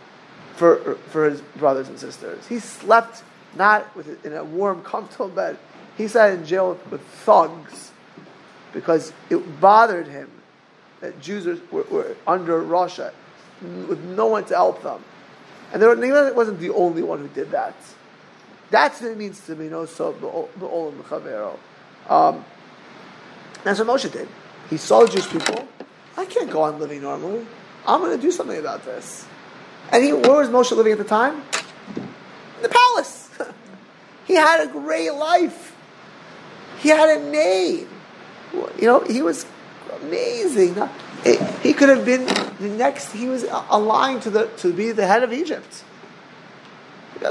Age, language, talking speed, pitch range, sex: 30-49, English, 160 wpm, 200-315 Hz, male